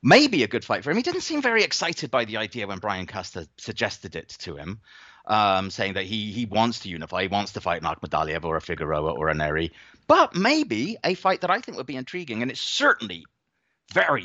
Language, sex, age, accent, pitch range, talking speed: English, male, 30-49, British, 90-120 Hz, 230 wpm